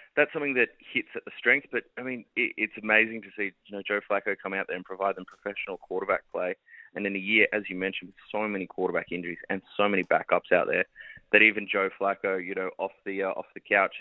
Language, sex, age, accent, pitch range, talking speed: English, male, 20-39, Australian, 95-115 Hz, 250 wpm